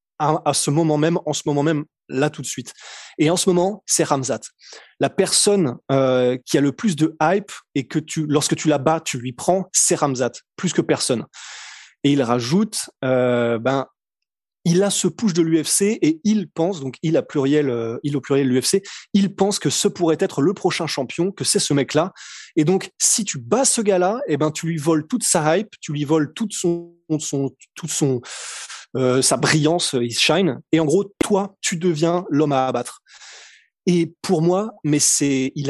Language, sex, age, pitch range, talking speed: French, male, 20-39, 140-185 Hz, 210 wpm